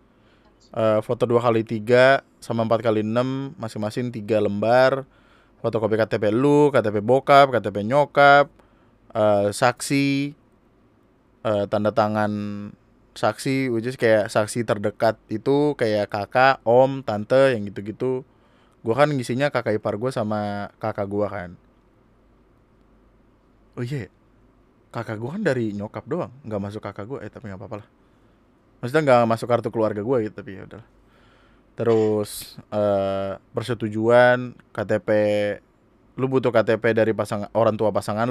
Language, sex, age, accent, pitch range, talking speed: Indonesian, male, 20-39, native, 105-125 Hz, 125 wpm